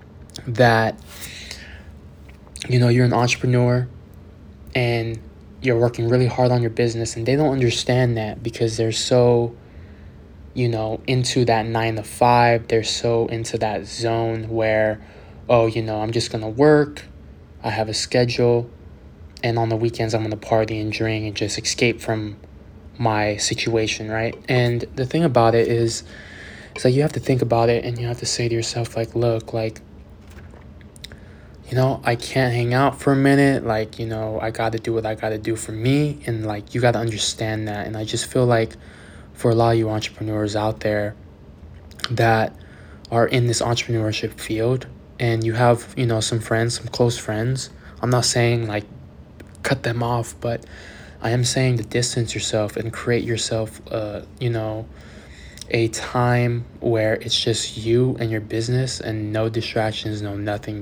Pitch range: 105-120 Hz